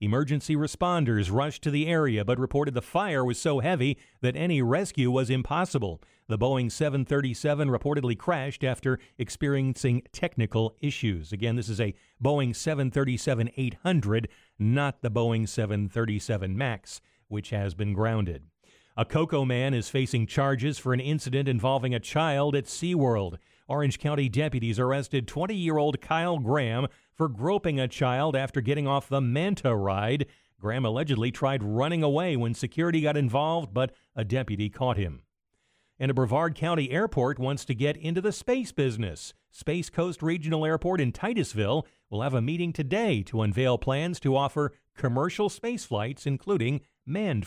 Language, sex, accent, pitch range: English, male, American, 115-150 Hz